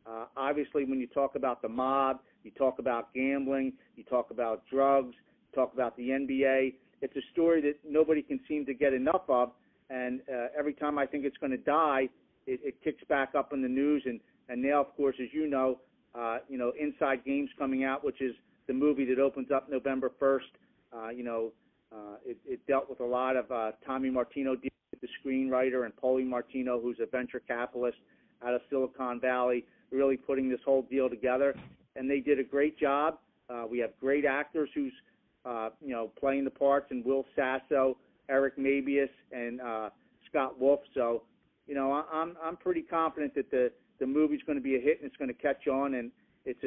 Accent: American